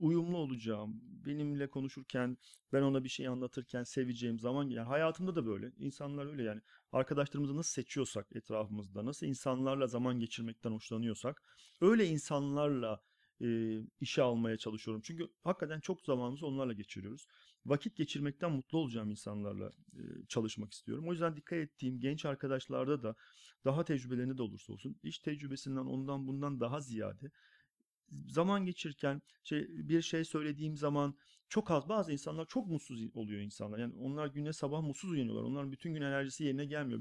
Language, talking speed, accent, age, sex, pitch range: Turkish, 150 wpm, native, 40-59, male, 120-155 Hz